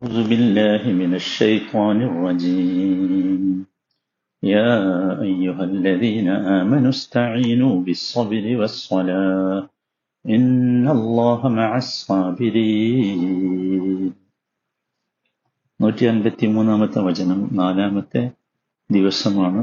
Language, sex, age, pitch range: Malayalam, male, 50-69, 95-120 Hz